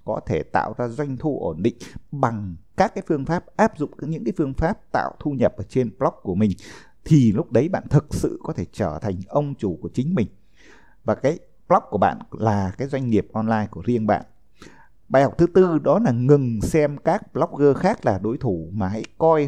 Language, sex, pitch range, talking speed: Vietnamese, male, 110-165 Hz, 220 wpm